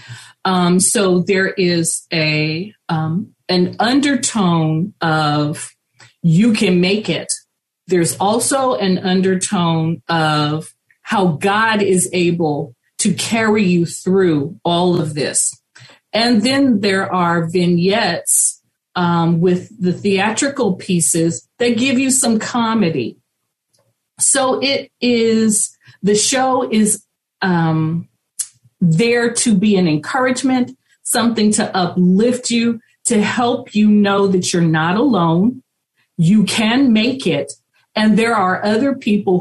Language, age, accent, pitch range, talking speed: English, 40-59, American, 175-225 Hz, 115 wpm